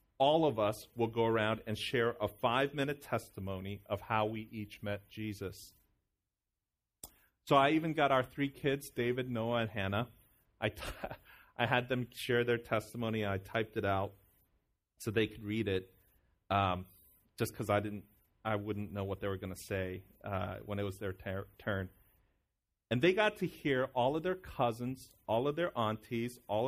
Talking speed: 180 wpm